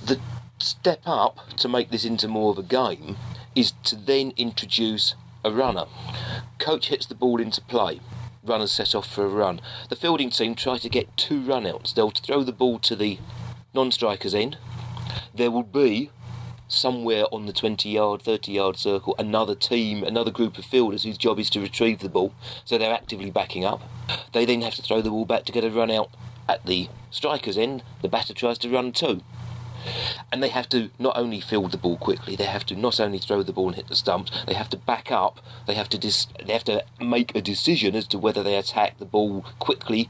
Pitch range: 110-125 Hz